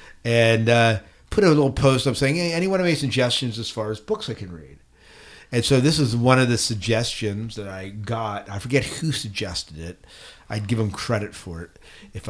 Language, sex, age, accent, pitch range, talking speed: English, male, 50-69, American, 100-130 Hz, 205 wpm